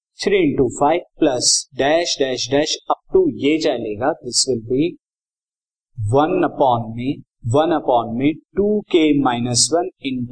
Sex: male